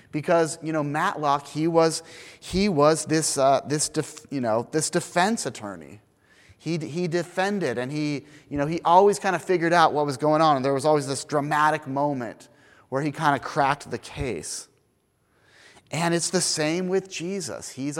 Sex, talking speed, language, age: male, 185 wpm, English, 30-49